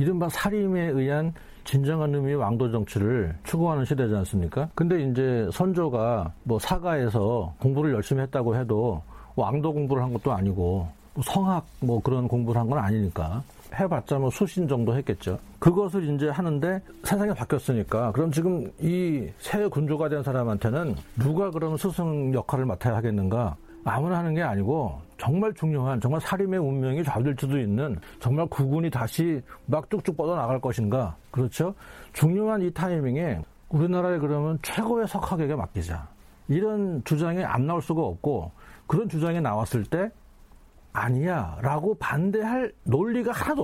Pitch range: 115-170 Hz